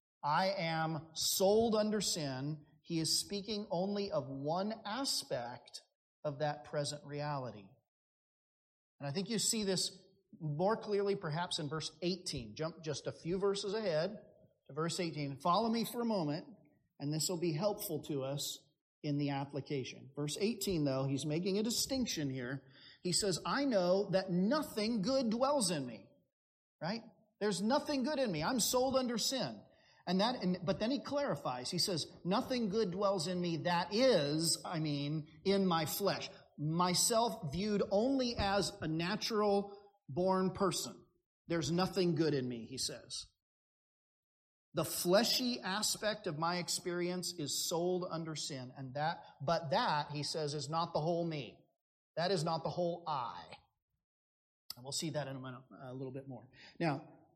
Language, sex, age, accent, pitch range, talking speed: English, male, 40-59, American, 150-205 Hz, 160 wpm